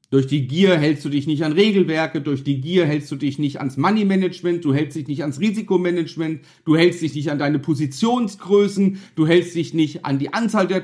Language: German